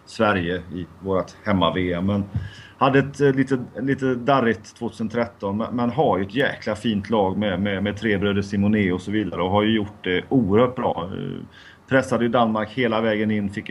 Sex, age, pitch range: male, 30-49, 100-140 Hz